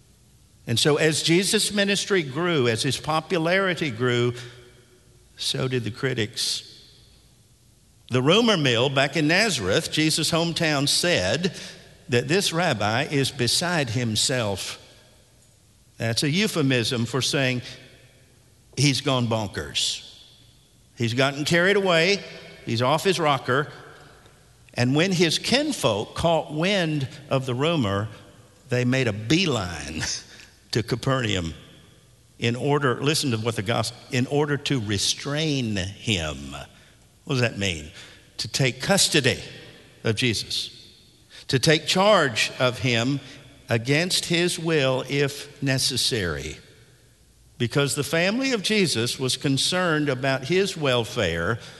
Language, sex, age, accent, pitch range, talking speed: English, male, 50-69, American, 115-150 Hz, 115 wpm